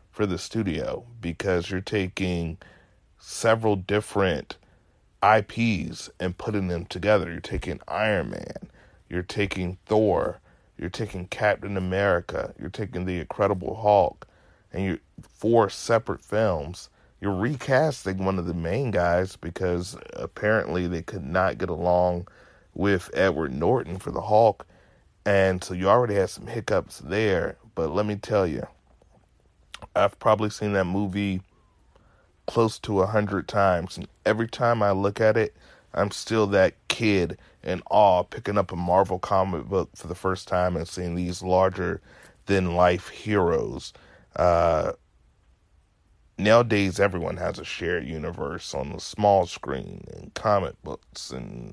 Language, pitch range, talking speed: English, 90-105 Hz, 145 wpm